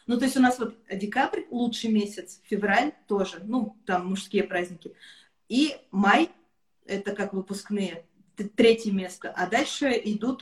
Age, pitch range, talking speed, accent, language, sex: 20-39, 195-245 Hz, 145 wpm, native, Russian, female